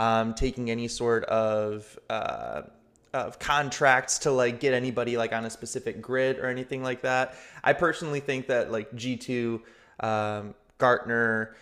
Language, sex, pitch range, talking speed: English, male, 115-130 Hz, 150 wpm